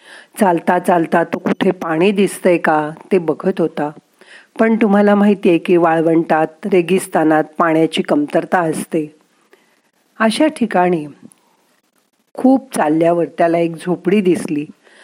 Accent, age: native, 40-59